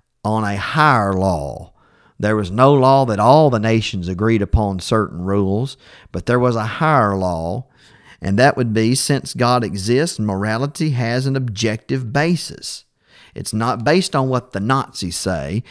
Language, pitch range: English, 100-135 Hz